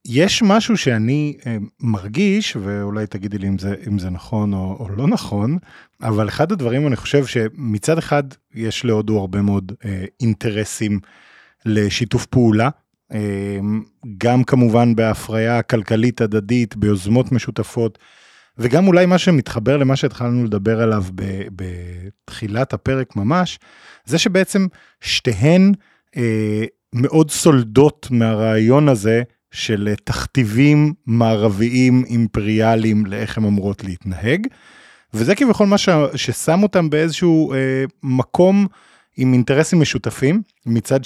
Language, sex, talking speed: Hebrew, male, 110 wpm